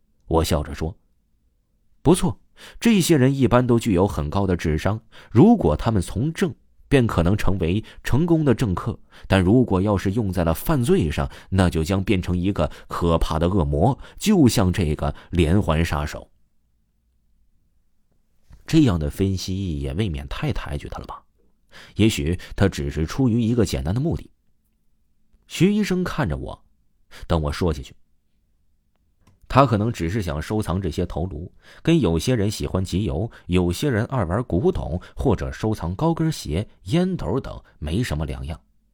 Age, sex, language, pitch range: 30-49, male, Chinese, 80-120 Hz